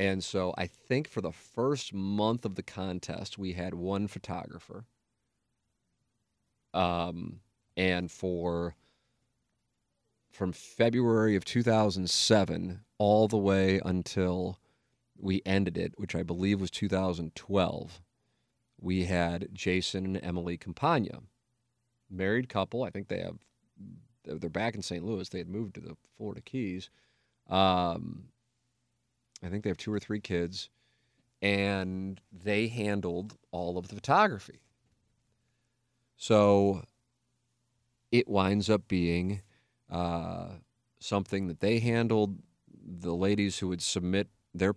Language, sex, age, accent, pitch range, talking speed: English, male, 30-49, American, 95-115 Hz, 120 wpm